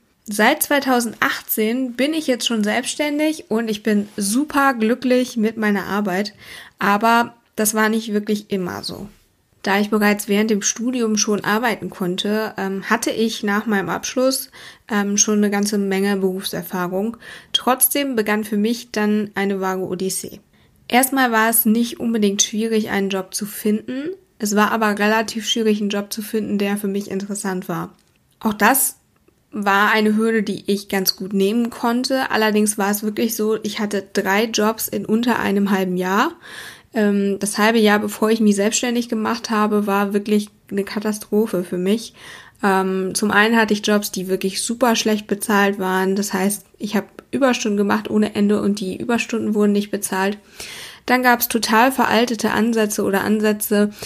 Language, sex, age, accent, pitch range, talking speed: German, female, 20-39, German, 200-225 Hz, 160 wpm